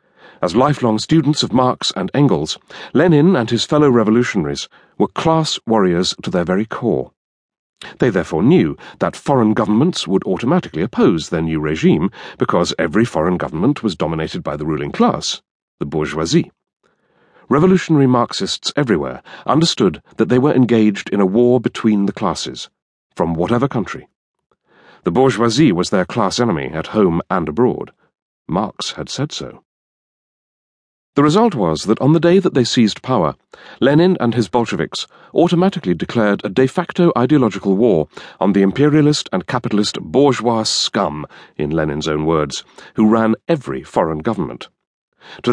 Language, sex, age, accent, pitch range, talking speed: English, male, 40-59, British, 105-150 Hz, 150 wpm